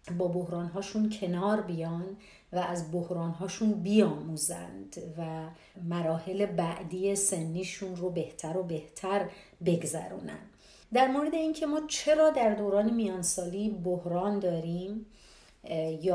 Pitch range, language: 170-220 Hz, Persian